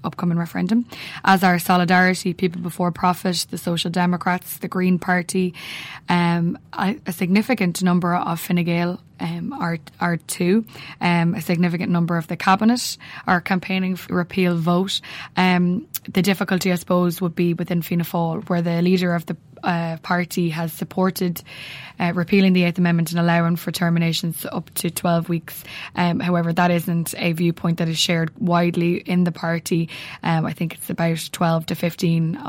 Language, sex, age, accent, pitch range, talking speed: English, female, 10-29, Irish, 170-180 Hz, 170 wpm